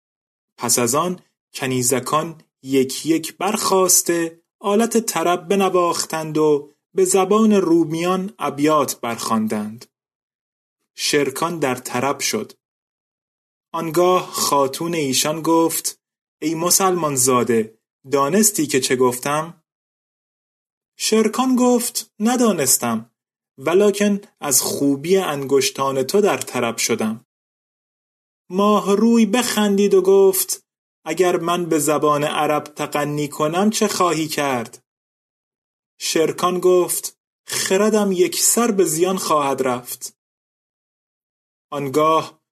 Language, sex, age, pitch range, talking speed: Persian, male, 30-49, 145-195 Hz, 95 wpm